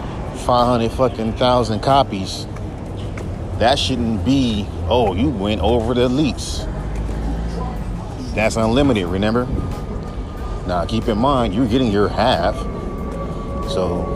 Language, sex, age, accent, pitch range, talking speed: English, male, 30-49, American, 85-120 Hz, 110 wpm